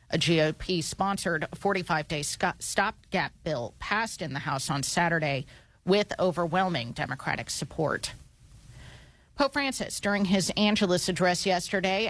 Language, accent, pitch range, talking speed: English, American, 155-190 Hz, 110 wpm